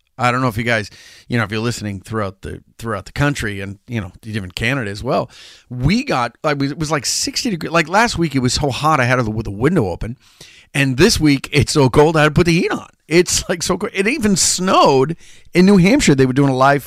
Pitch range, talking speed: 115-150 Hz, 255 wpm